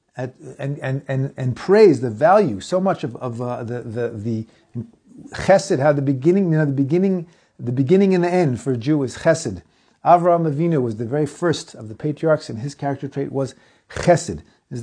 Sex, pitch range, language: male, 125-170 Hz, English